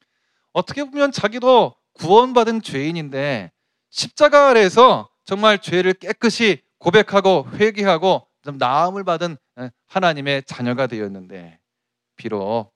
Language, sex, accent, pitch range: Korean, male, native, 120-200 Hz